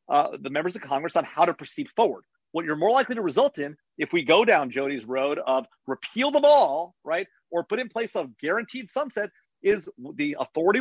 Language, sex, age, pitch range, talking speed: English, male, 40-59, 175-265 Hz, 210 wpm